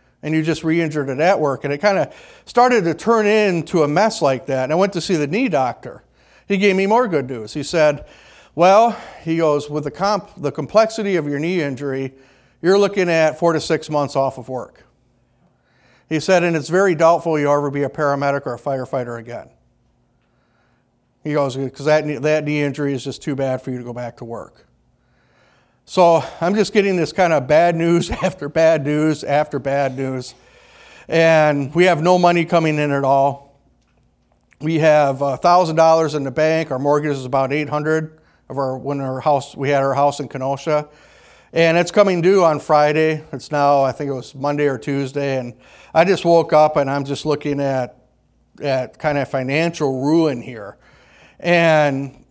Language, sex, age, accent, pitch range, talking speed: English, male, 50-69, American, 135-165 Hz, 195 wpm